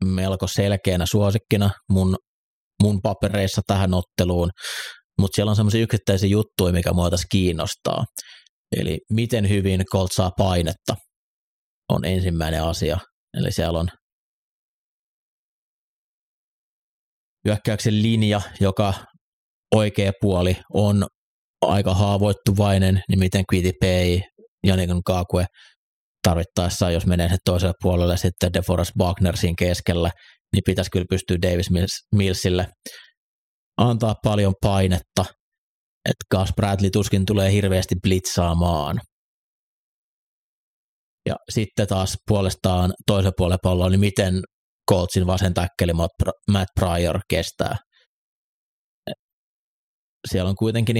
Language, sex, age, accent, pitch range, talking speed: Finnish, male, 30-49, native, 90-100 Hz, 105 wpm